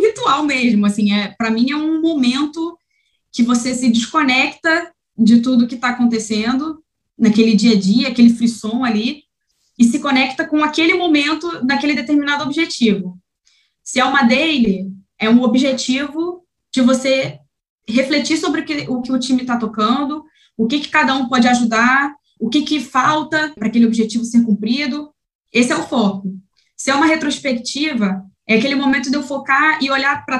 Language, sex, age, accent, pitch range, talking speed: Portuguese, female, 20-39, Brazilian, 235-300 Hz, 165 wpm